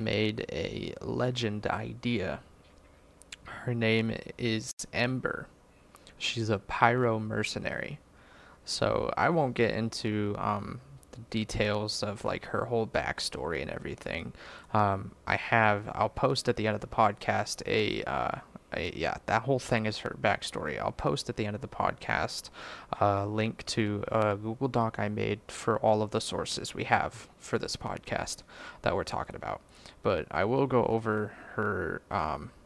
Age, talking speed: 20-39, 155 wpm